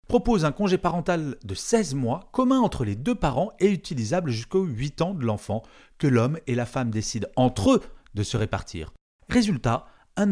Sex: male